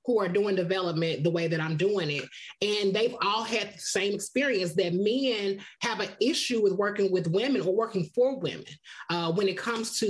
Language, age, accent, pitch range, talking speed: English, 30-49, American, 170-225 Hz, 210 wpm